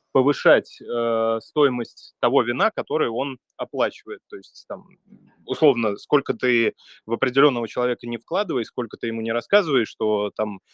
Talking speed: 145 wpm